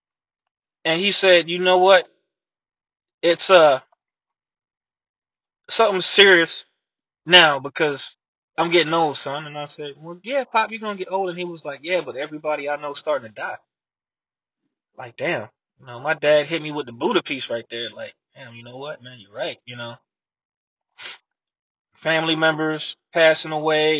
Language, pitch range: English, 155-185 Hz